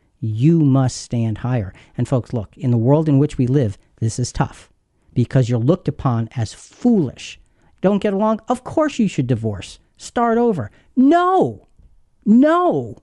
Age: 50-69